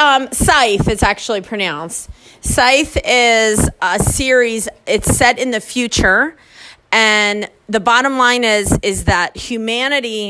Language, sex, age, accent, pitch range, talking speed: English, female, 30-49, American, 205-255 Hz, 130 wpm